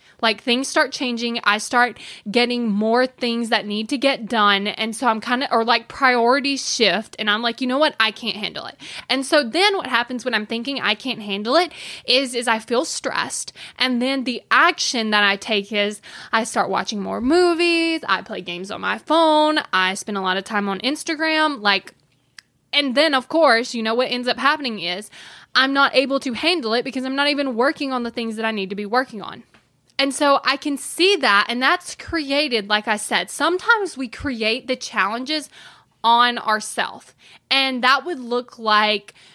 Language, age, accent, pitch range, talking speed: English, 10-29, American, 220-275 Hz, 205 wpm